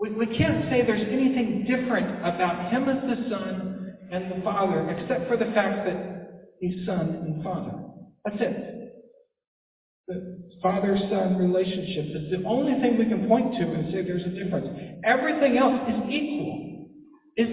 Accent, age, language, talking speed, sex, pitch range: American, 60-79, English, 160 wpm, male, 150-205 Hz